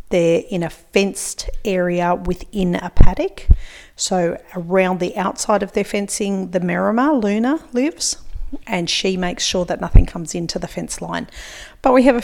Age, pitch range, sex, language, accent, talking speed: 40-59, 175-210 Hz, female, English, Australian, 165 wpm